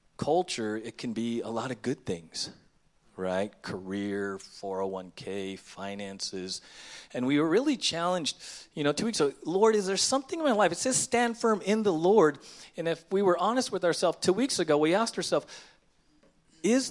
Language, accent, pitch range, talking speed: English, American, 125-185 Hz, 180 wpm